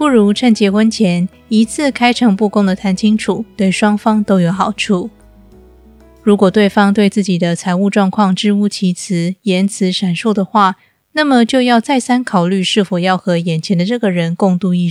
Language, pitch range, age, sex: Chinese, 180-215 Hz, 20-39, female